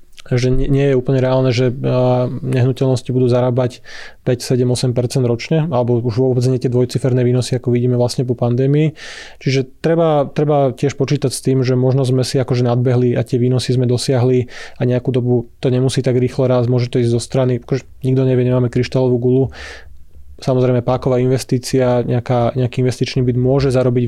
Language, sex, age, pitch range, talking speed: Slovak, male, 20-39, 125-130 Hz, 175 wpm